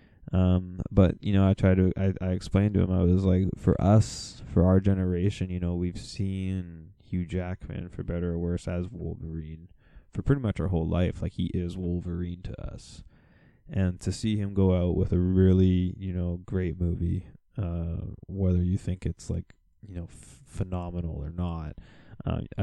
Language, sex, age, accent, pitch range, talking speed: English, male, 20-39, American, 85-100 Hz, 185 wpm